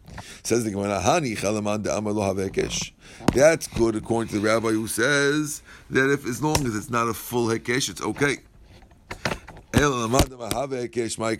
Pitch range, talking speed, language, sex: 100-130 Hz, 110 wpm, English, male